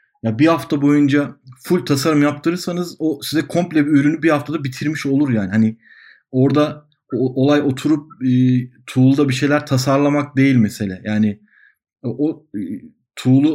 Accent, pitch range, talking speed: native, 120-145 Hz, 145 wpm